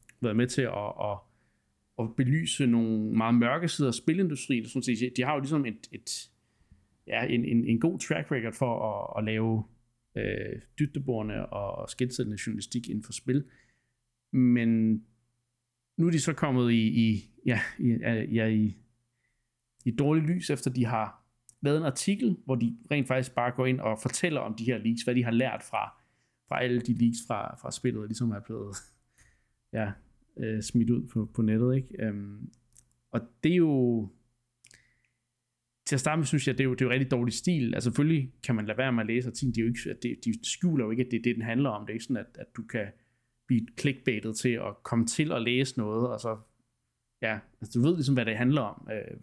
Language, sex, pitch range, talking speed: Danish, male, 115-130 Hz, 205 wpm